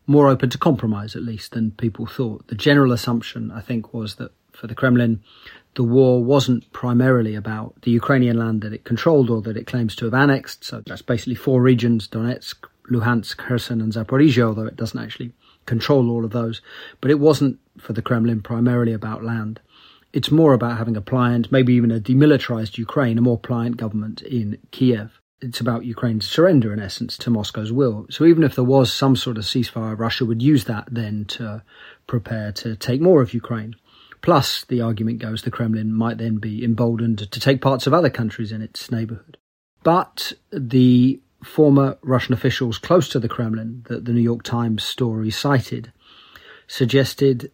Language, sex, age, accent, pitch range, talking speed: English, male, 30-49, British, 115-130 Hz, 185 wpm